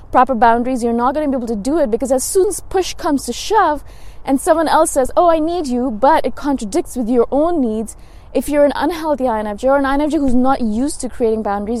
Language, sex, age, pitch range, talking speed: English, female, 20-39, 225-275 Hz, 245 wpm